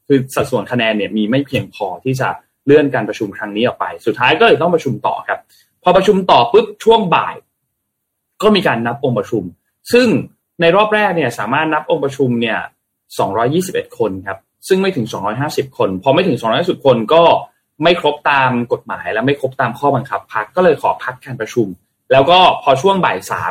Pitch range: 120-175 Hz